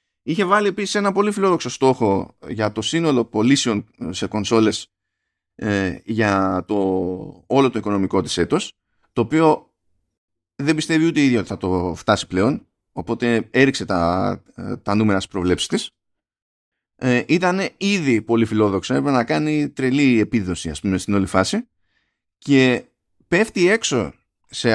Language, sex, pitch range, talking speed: Greek, male, 105-170 Hz, 140 wpm